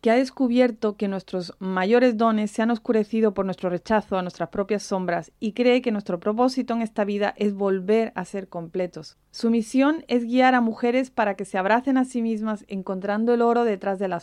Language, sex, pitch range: English, female, 195-245 Hz